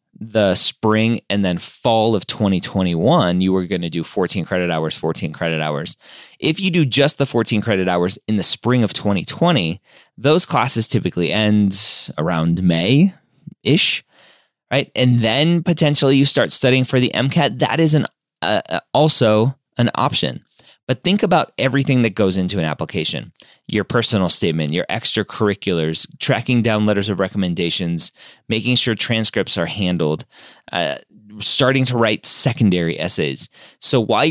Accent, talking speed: American, 150 wpm